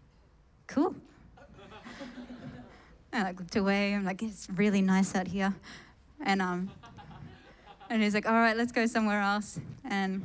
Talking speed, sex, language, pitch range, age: 130 wpm, female, English, 175-210 Hz, 20-39